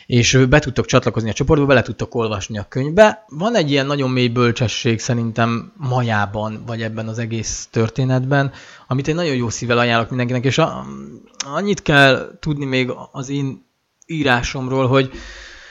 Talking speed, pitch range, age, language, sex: 155 wpm, 120-145 Hz, 20-39, Hungarian, male